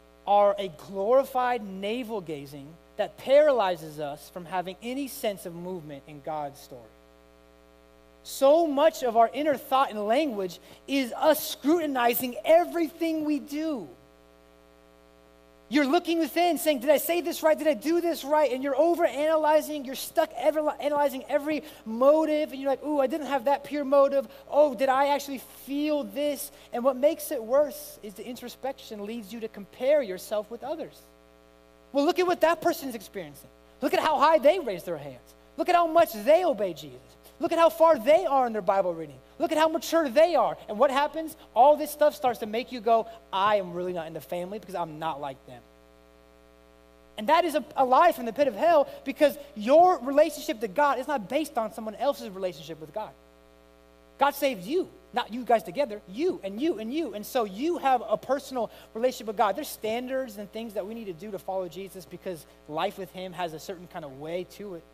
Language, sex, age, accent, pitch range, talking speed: English, male, 30-49, American, 185-295 Hz, 200 wpm